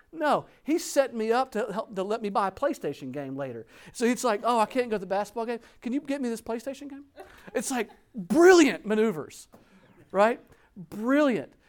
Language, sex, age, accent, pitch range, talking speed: English, male, 40-59, American, 150-215 Hz, 200 wpm